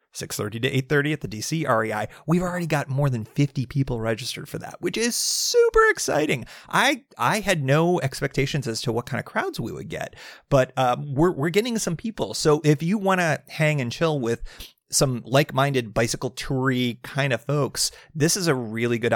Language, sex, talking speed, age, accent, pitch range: English, male, 205 wpm, 30-49, American, 120-155 Hz